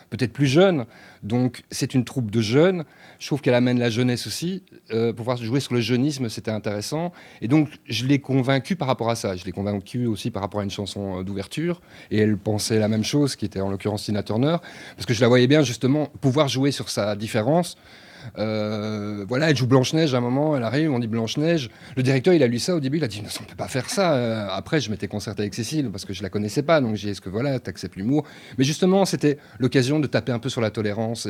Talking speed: 245 wpm